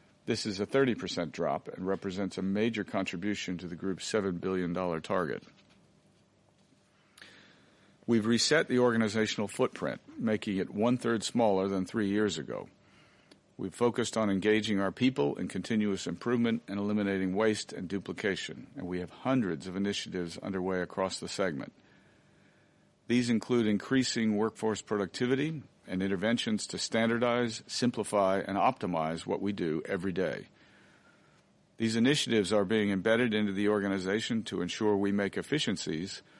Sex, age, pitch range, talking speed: male, 50-69, 95-115 Hz, 135 wpm